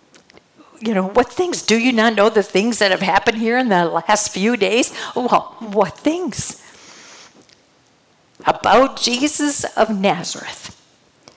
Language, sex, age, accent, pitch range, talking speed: English, female, 50-69, American, 195-245 Hz, 135 wpm